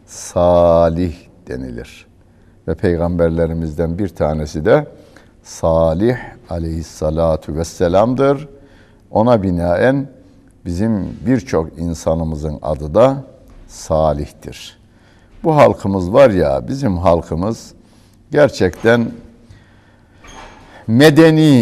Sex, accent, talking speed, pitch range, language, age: male, native, 70 wpm, 85-115 Hz, Turkish, 60-79